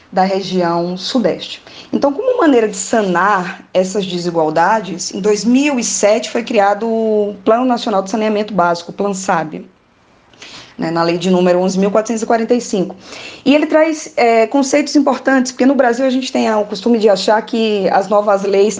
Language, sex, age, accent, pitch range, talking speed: Portuguese, female, 20-39, Brazilian, 190-260 Hz, 155 wpm